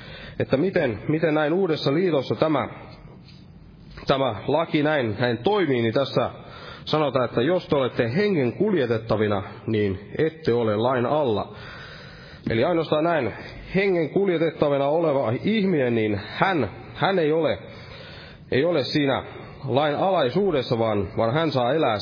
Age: 30-49